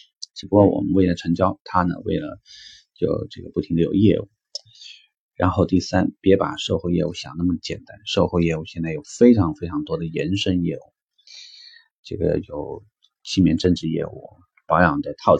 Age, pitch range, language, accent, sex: 30-49, 85-135 Hz, Chinese, native, male